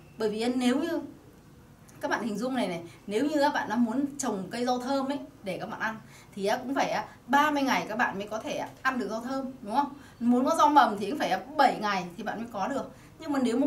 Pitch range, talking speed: 200-275 Hz, 260 wpm